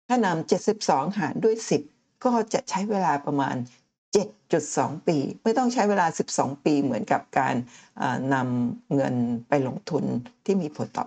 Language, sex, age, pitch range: Thai, female, 60-79, 140-200 Hz